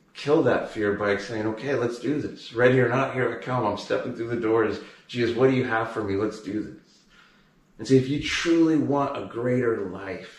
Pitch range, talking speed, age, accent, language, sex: 120-160 Hz, 225 wpm, 30-49, American, English, male